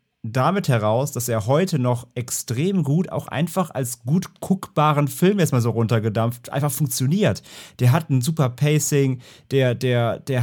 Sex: male